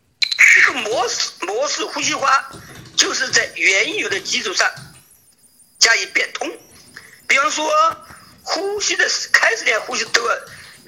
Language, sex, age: Chinese, male, 50-69